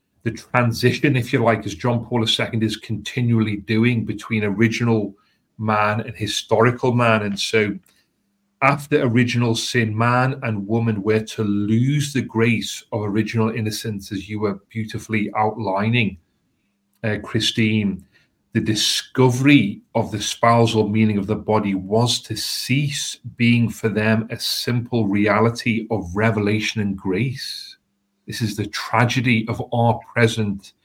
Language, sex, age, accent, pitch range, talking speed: English, male, 40-59, British, 105-120 Hz, 135 wpm